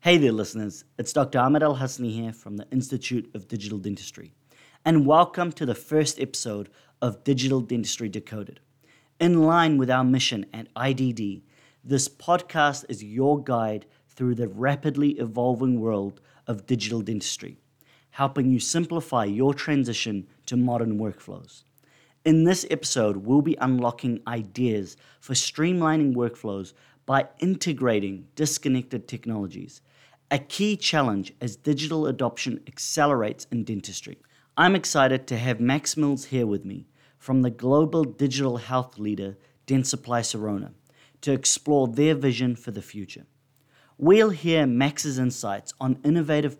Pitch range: 115-145 Hz